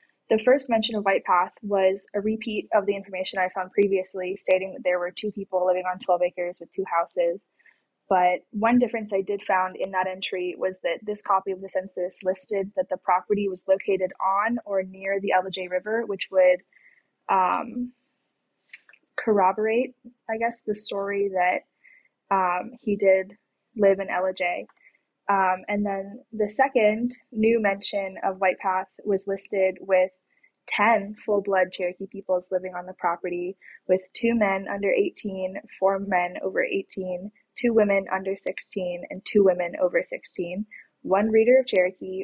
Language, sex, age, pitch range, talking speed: English, female, 10-29, 185-220 Hz, 160 wpm